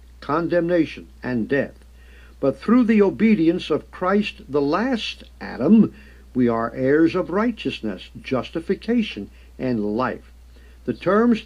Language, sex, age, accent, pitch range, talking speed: English, male, 60-79, American, 115-195 Hz, 115 wpm